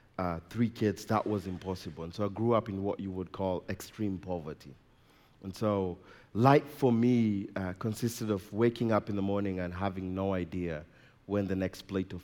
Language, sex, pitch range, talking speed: English, male, 90-115 Hz, 195 wpm